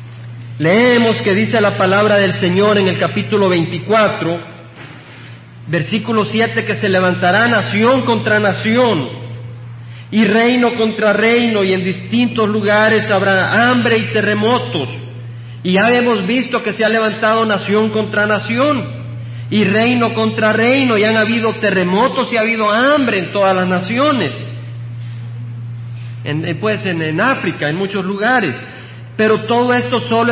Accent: Mexican